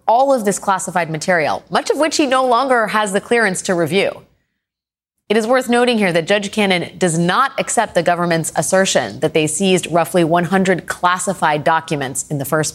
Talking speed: 190 wpm